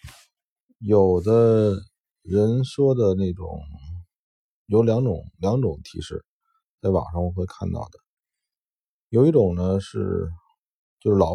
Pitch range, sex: 90-120 Hz, male